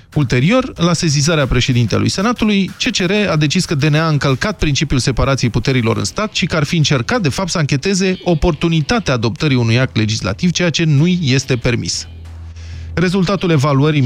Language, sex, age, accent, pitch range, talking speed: Romanian, male, 20-39, native, 125-175 Hz, 160 wpm